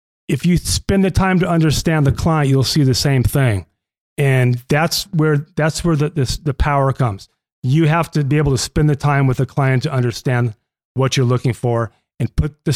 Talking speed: 210 wpm